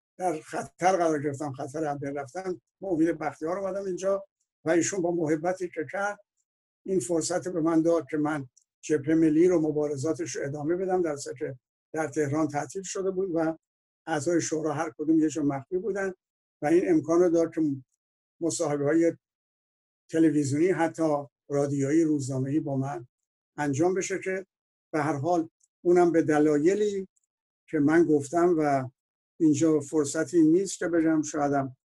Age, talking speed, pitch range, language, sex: 60-79, 145 wpm, 145-170 Hz, Persian, male